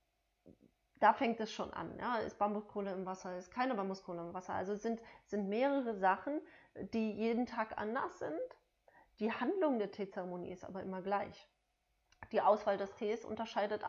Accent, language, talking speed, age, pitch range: German, German, 165 wpm, 30-49, 185-220 Hz